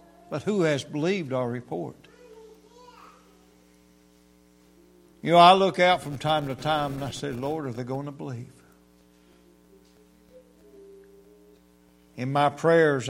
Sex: male